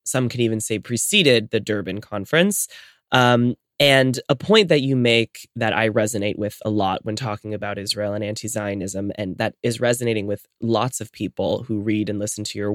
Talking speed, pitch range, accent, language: 195 wpm, 105-125 Hz, American, English